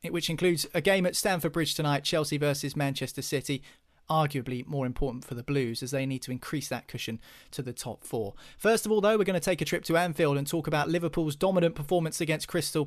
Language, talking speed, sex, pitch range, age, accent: English, 230 wpm, male, 140-175 Hz, 30-49, British